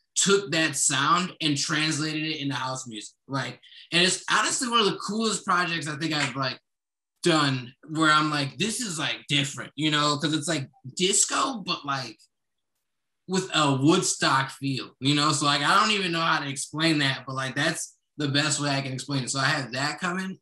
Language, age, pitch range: English, 20-39, 130-155 Hz